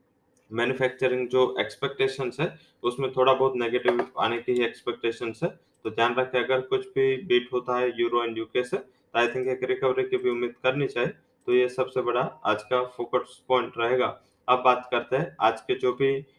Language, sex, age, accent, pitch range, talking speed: English, male, 20-39, Indian, 120-130 Hz, 185 wpm